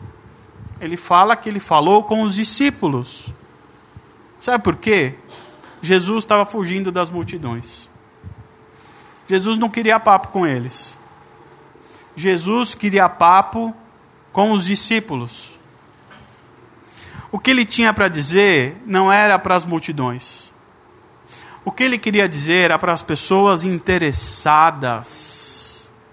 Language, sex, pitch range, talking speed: Portuguese, male, 145-205 Hz, 115 wpm